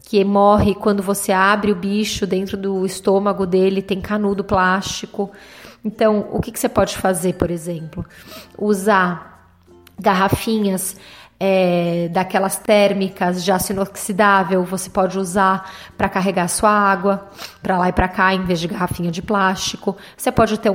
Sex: female